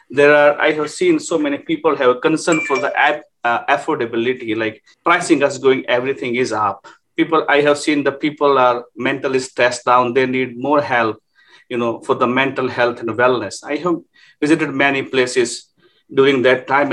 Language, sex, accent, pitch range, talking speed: English, male, Indian, 125-165 Hz, 190 wpm